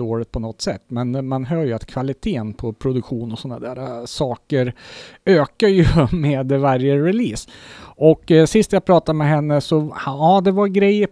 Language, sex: Swedish, male